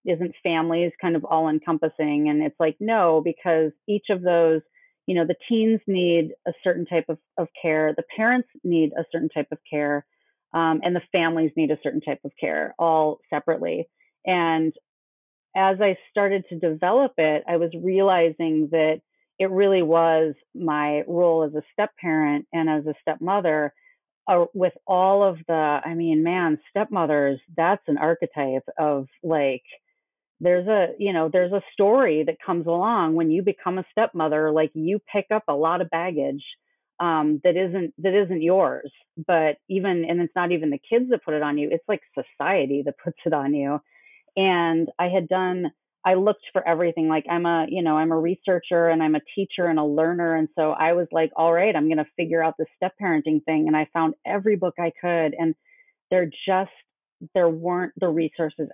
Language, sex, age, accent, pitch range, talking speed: English, female, 30-49, American, 155-185 Hz, 190 wpm